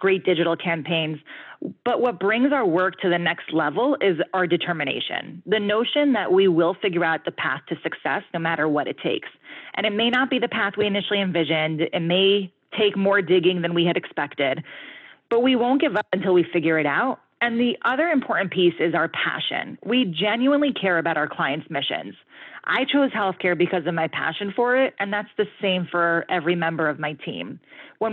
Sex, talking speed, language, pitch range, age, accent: female, 205 wpm, English, 170-210 Hz, 30-49, American